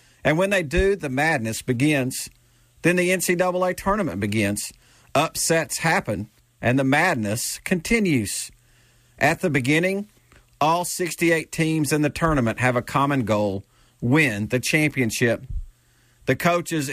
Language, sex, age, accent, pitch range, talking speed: English, male, 50-69, American, 120-165 Hz, 130 wpm